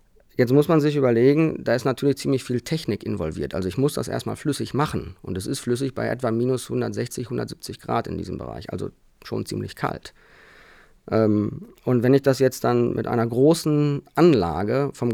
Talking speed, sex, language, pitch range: 185 wpm, male, German, 110-145 Hz